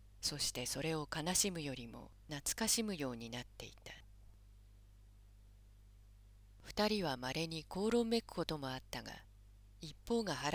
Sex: female